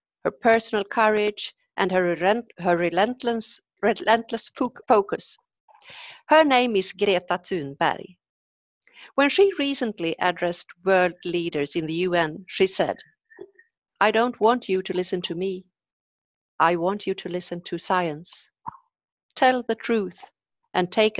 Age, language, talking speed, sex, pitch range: 50-69, Swedish, 125 wpm, female, 175-225 Hz